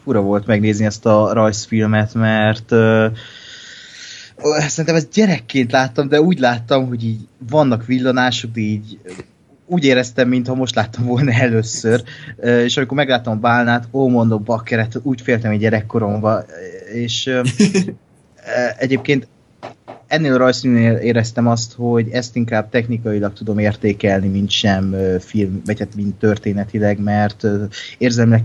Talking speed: 135 wpm